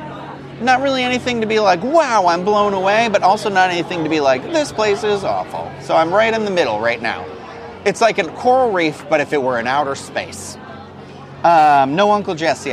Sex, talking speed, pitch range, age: male, 210 wpm, 140-185 Hz, 30-49